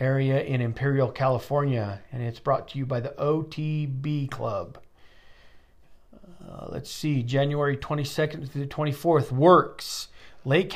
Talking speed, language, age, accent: 130 wpm, English, 40-59, American